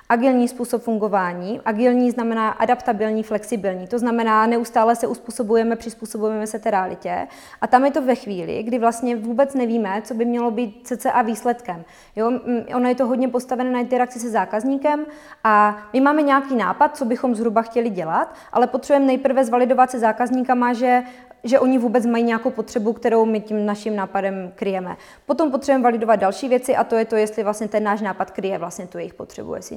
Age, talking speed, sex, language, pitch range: 20-39, 185 wpm, female, Czech, 205-240 Hz